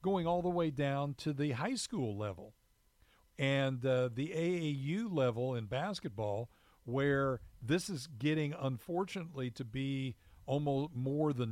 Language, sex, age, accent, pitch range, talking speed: English, male, 50-69, American, 120-145 Hz, 140 wpm